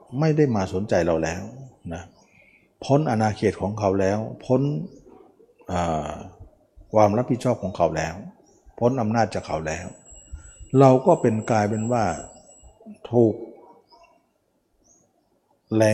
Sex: male